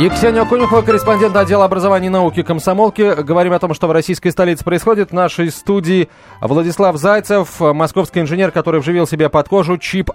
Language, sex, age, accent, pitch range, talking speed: Russian, male, 30-49, native, 140-190 Hz, 170 wpm